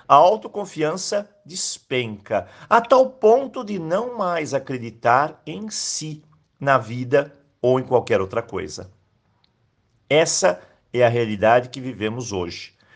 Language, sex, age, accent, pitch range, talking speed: Portuguese, male, 50-69, Brazilian, 115-170 Hz, 120 wpm